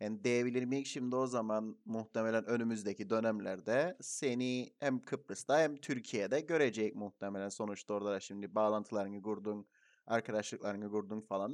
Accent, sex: native, male